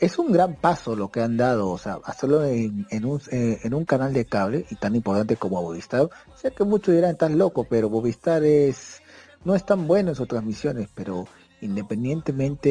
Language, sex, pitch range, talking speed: Spanish, male, 110-140 Hz, 210 wpm